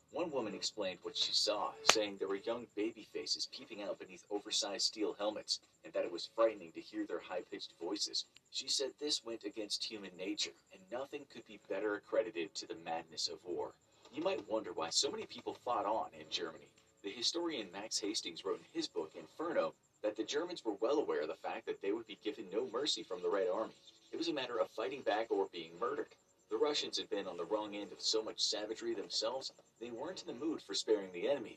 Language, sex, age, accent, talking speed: English, male, 40-59, American, 225 wpm